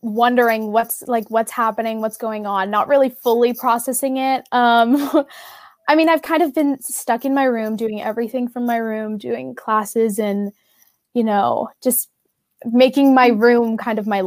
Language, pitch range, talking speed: English, 225-270 Hz, 175 wpm